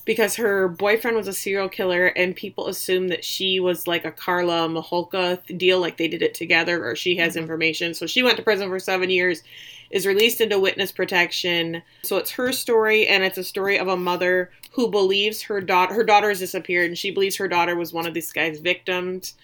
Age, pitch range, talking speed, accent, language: 20-39, 170-200 Hz, 215 wpm, American, English